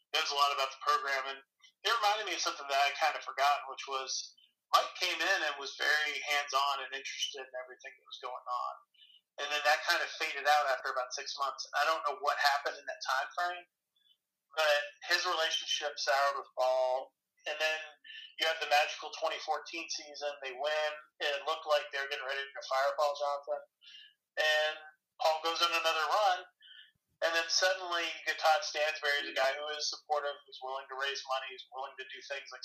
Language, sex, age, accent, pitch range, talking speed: English, male, 30-49, American, 135-160 Hz, 205 wpm